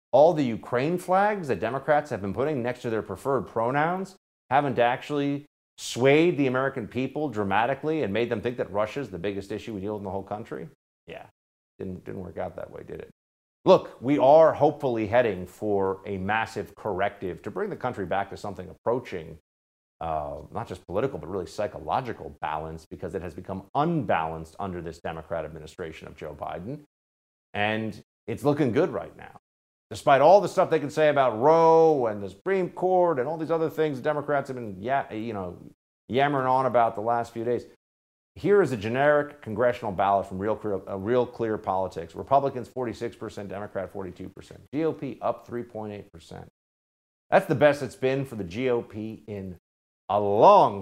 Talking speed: 175 wpm